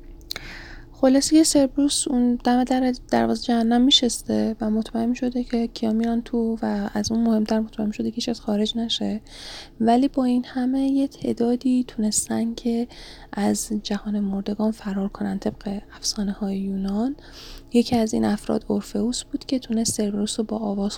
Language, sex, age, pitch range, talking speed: Persian, female, 10-29, 205-245 Hz, 155 wpm